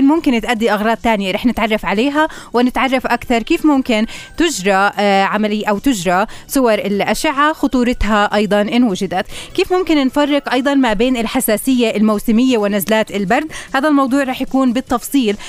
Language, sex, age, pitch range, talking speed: Arabic, female, 20-39, 205-245 Hz, 140 wpm